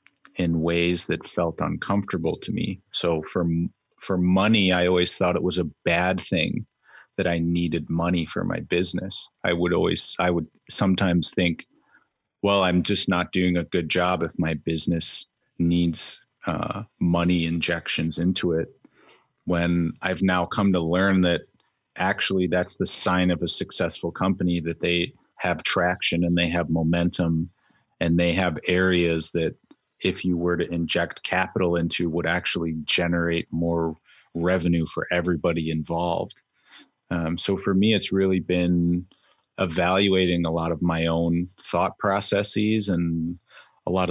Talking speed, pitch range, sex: 150 wpm, 85-90 Hz, male